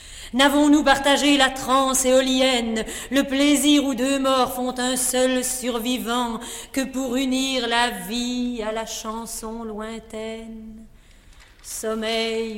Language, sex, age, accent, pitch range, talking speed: French, female, 40-59, French, 235-275 Hz, 115 wpm